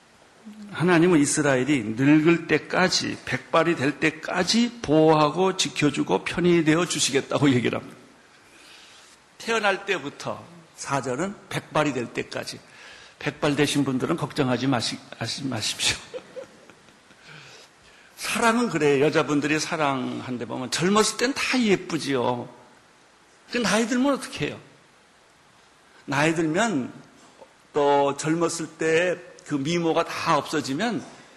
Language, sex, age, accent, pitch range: Korean, male, 60-79, native, 145-215 Hz